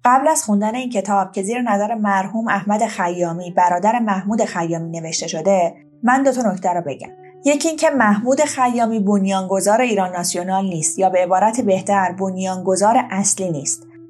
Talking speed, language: 160 wpm, Persian